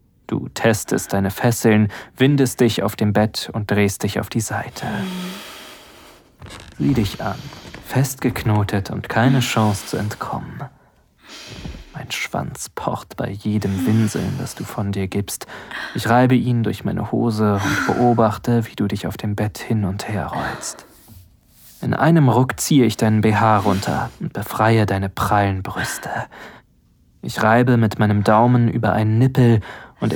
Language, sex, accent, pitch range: German, male, German, 100-120 Hz